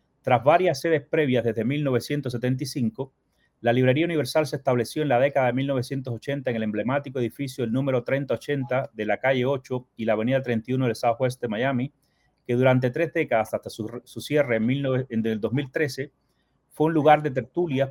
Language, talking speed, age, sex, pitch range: Spanish, 180 wpm, 30-49, male, 120-145 Hz